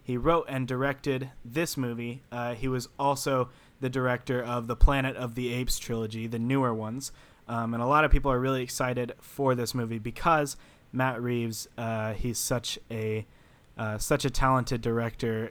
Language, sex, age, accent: English, male, 20-39, American